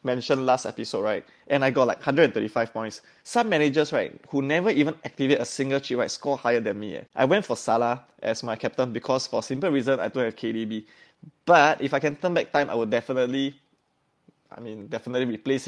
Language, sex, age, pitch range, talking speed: English, male, 20-39, 120-145 Hz, 215 wpm